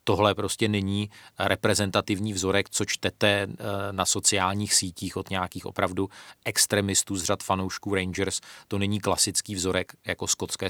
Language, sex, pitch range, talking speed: Czech, male, 95-115 Hz, 135 wpm